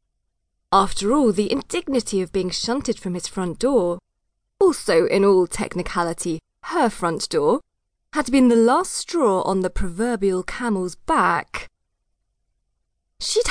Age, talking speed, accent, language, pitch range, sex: 20-39, 130 wpm, British, English, 185-300 Hz, female